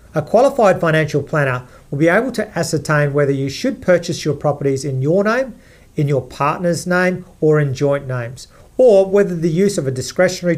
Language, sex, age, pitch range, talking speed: English, male, 40-59, 135-170 Hz, 185 wpm